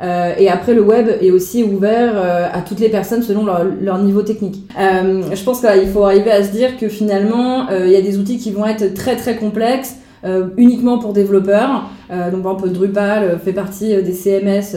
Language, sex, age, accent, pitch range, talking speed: French, female, 20-39, French, 190-220 Hz, 220 wpm